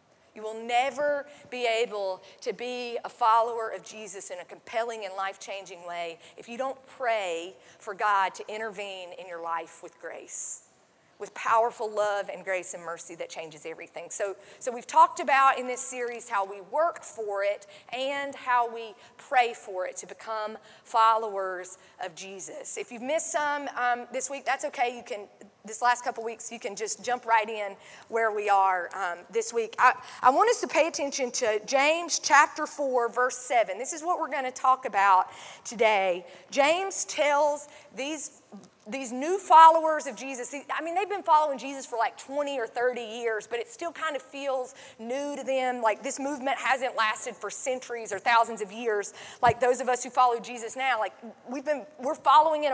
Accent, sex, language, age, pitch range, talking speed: American, female, English, 40-59, 220-285 Hz, 190 wpm